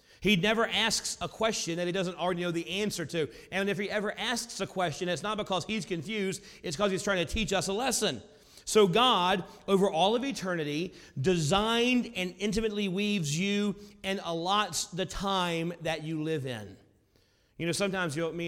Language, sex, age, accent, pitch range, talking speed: English, male, 40-59, American, 150-195 Hz, 185 wpm